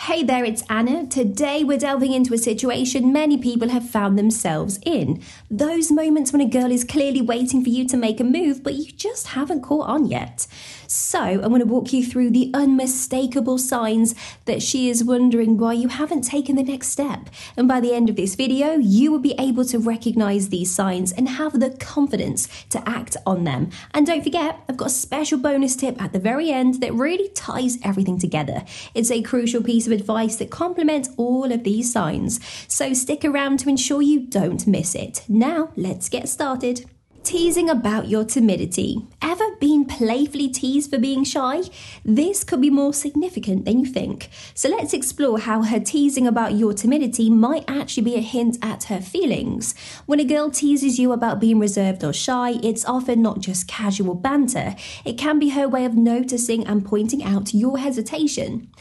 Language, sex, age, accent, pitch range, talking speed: English, female, 20-39, British, 225-285 Hz, 195 wpm